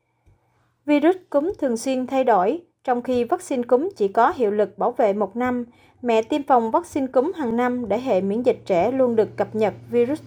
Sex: female